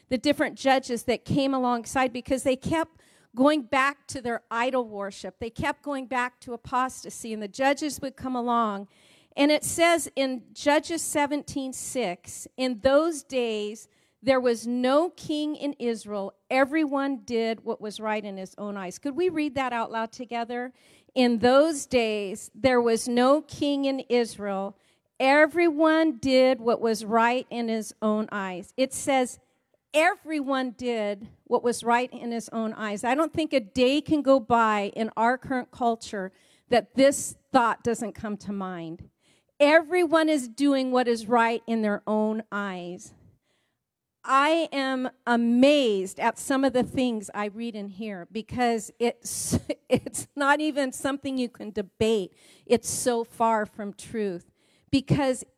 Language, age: English, 50-69